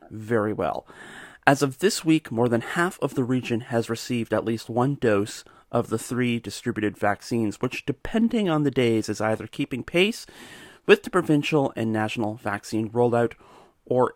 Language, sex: English, male